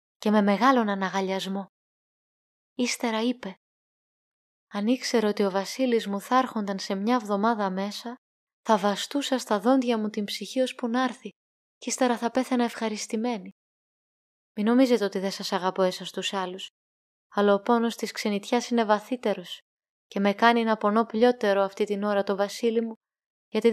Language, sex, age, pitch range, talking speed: Greek, female, 20-39, 200-255 Hz, 160 wpm